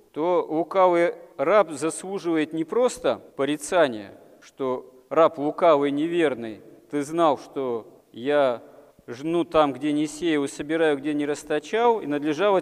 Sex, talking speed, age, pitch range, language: male, 125 wpm, 40-59, 140-170 Hz, Russian